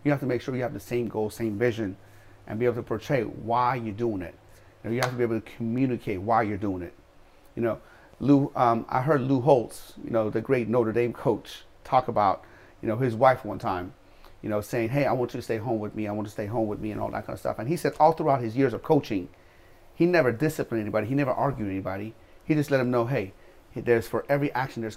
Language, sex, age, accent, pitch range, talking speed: English, male, 30-49, American, 100-135 Hz, 270 wpm